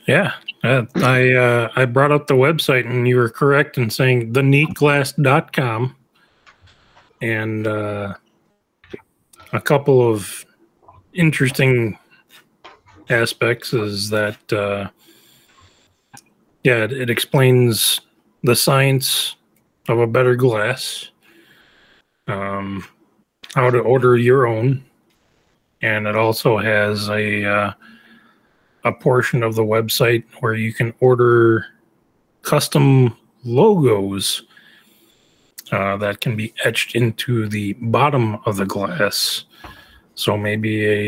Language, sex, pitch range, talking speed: English, male, 105-130 Hz, 110 wpm